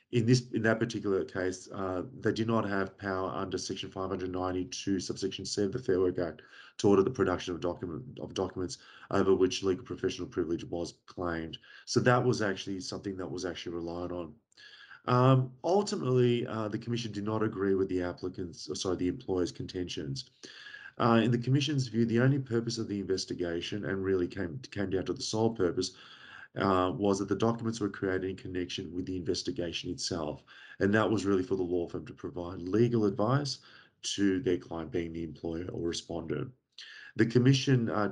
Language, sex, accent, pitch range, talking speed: English, male, Australian, 95-115 Hz, 185 wpm